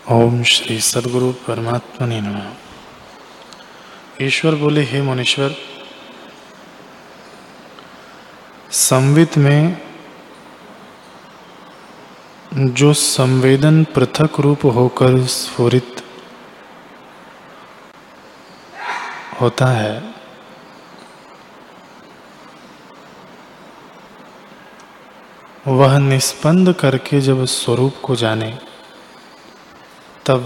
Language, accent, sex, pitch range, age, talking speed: Hindi, native, male, 120-145 Hz, 20-39, 55 wpm